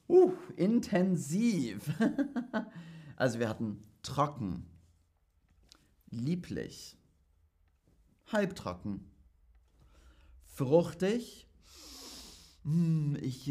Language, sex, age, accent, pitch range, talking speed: German, male, 40-59, German, 105-165 Hz, 45 wpm